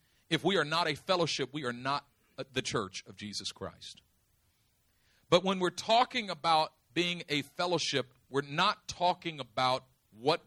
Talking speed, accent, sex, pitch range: 155 wpm, American, male, 115-170 Hz